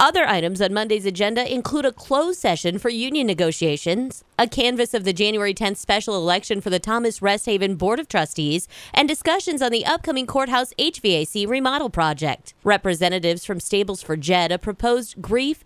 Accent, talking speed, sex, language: American, 170 wpm, female, English